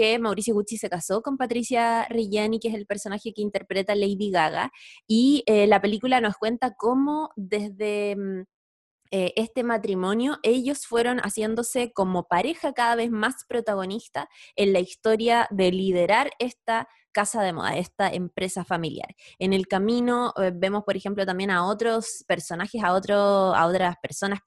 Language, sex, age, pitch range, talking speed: Spanish, female, 20-39, 180-230 Hz, 155 wpm